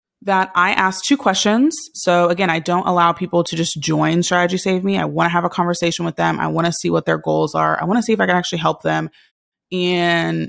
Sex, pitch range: female, 170-205 Hz